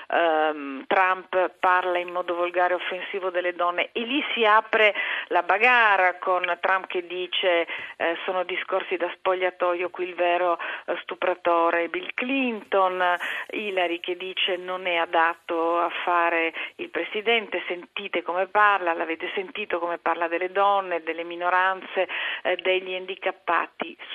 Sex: female